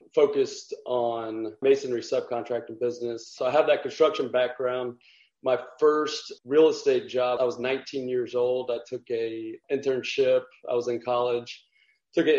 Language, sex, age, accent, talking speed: English, male, 30-49, American, 150 wpm